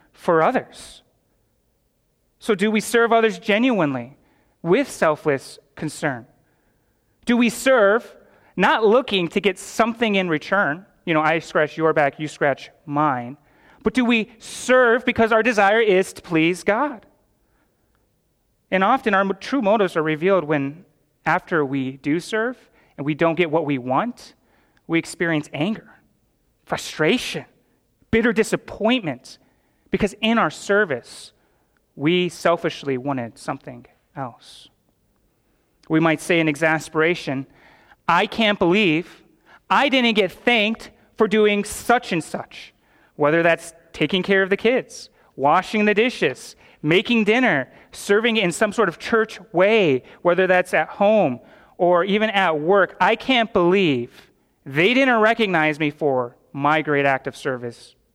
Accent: American